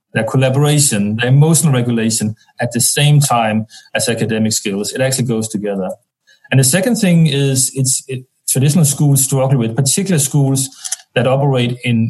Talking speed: 160 wpm